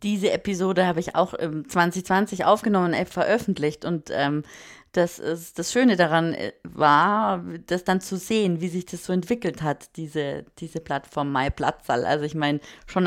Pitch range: 170-220 Hz